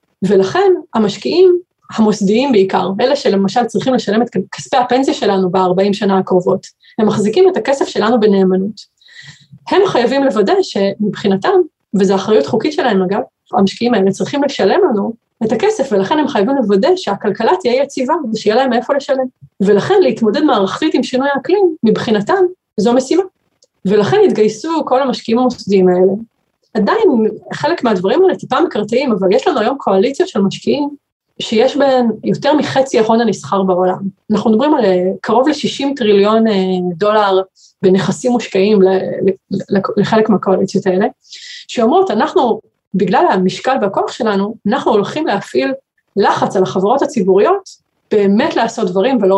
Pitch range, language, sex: 195-265 Hz, Hebrew, female